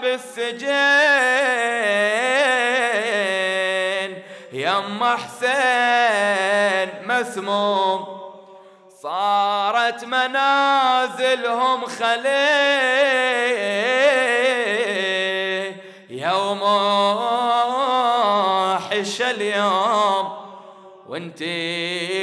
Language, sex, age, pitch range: Arabic, male, 30-49, 190-255 Hz